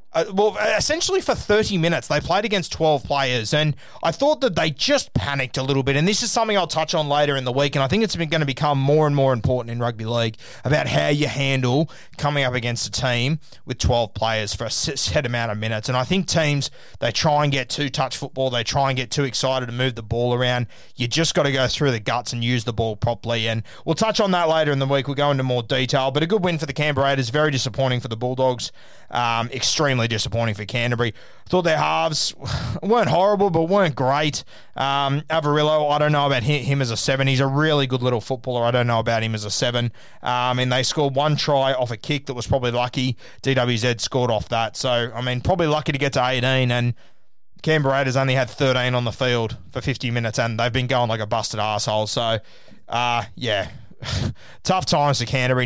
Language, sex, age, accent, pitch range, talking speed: English, male, 20-39, Australian, 120-150 Hz, 235 wpm